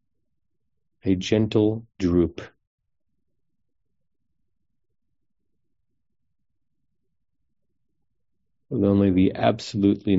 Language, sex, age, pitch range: English, male, 40-59, 85-105 Hz